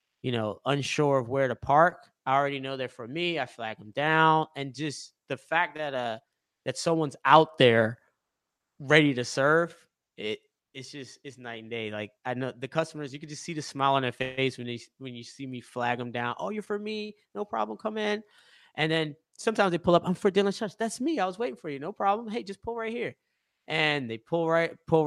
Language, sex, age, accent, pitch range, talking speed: English, male, 20-39, American, 130-170 Hz, 230 wpm